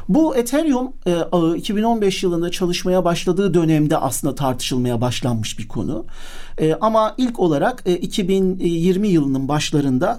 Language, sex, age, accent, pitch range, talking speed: Turkish, male, 50-69, native, 140-200 Hz, 110 wpm